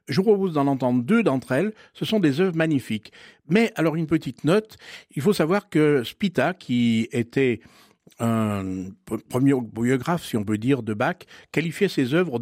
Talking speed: 175 wpm